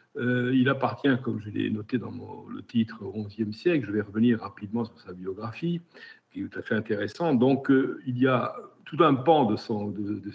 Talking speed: 220 wpm